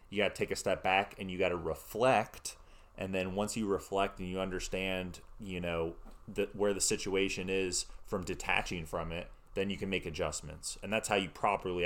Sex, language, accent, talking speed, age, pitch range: male, English, American, 200 wpm, 30-49, 90-100 Hz